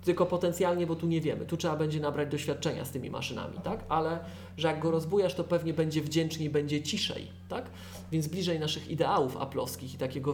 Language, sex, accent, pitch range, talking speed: Polish, male, native, 145-185 Hz, 195 wpm